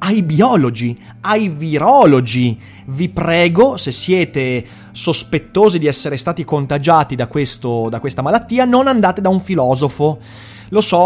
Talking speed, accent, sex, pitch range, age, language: 135 wpm, native, male, 135-175 Hz, 30-49, Italian